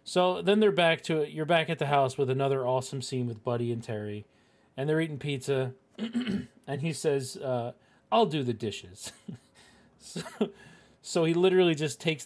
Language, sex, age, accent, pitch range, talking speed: English, male, 40-59, American, 125-170 Hz, 180 wpm